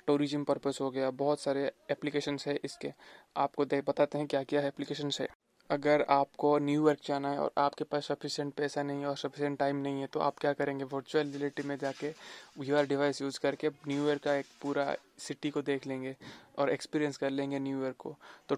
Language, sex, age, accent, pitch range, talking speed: Hindi, male, 20-39, native, 140-150 Hz, 200 wpm